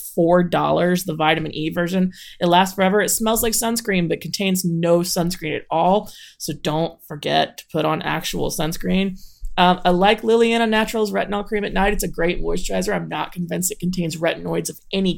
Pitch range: 170-210 Hz